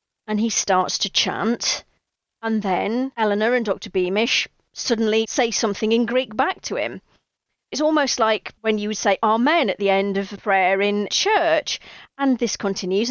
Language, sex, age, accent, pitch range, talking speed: English, female, 40-59, British, 205-300 Hz, 175 wpm